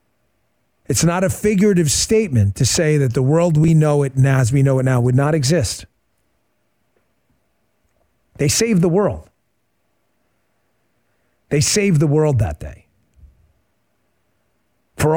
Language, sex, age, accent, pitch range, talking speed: English, male, 40-59, American, 115-160 Hz, 130 wpm